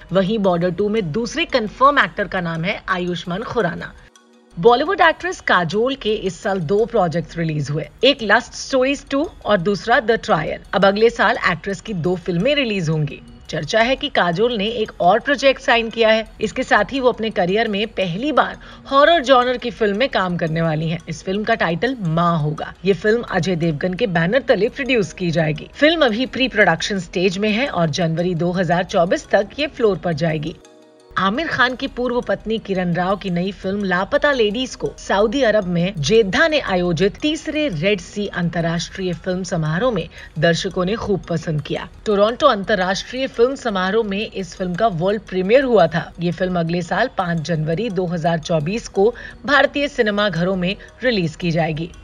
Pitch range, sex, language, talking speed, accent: 175-235 Hz, female, Hindi, 180 wpm, native